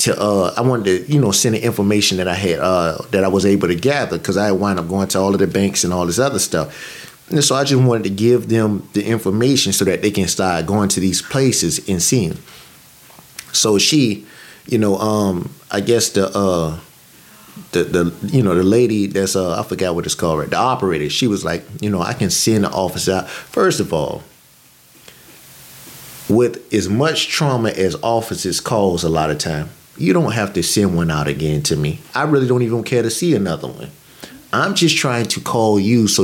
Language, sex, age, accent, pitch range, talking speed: English, male, 30-49, American, 95-130 Hz, 215 wpm